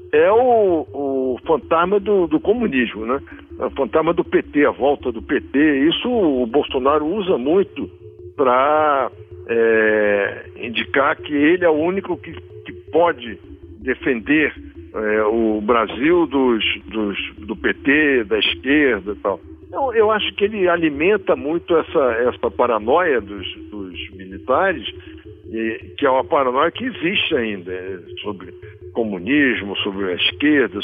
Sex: male